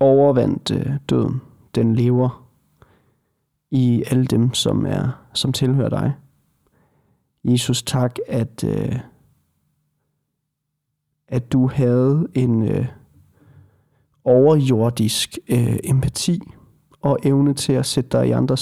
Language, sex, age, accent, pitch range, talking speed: Danish, male, 30-49, native, 120-145 Hz, 95 wpm